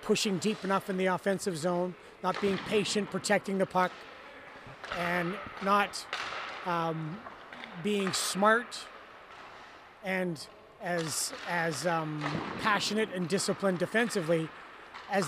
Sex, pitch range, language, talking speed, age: male, 190-245 Hz, English, 105 wpm, 30-49